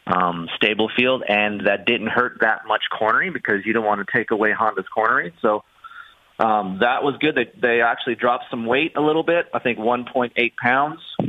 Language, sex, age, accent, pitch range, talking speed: English, male, 30-49, American, 105-120 Hz, 195 wpm